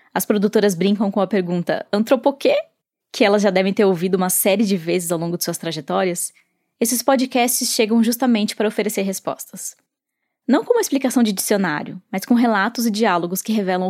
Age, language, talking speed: 10-29, Portuguese, 180 wpm